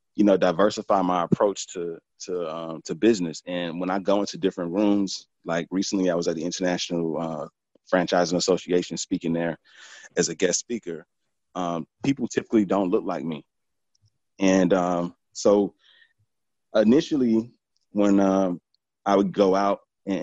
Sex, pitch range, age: male, 90-105 Hz, 30-49